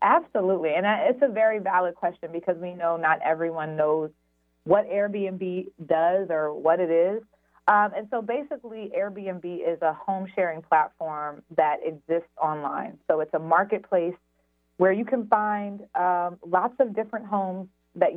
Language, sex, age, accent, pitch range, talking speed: English, female, 30-49, American, 155-190 Hz, 155 wpm